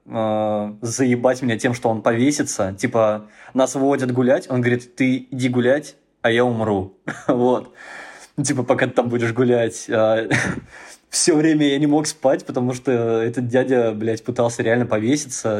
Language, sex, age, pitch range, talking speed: Russian, male, 20-39, 115-140 Hz, 150 wpm